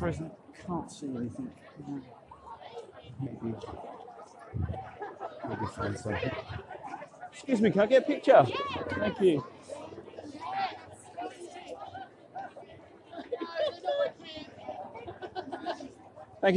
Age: 30-49